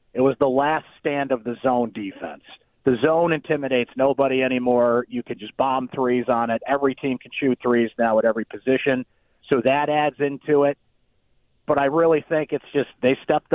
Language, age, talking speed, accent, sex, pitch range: English, 40-59, 190 wpm, American, male, 125-150 Hz